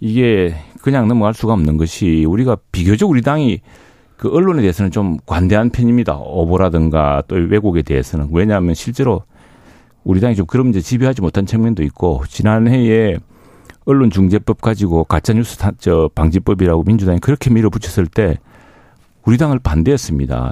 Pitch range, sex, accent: 85-115 Hz, male, native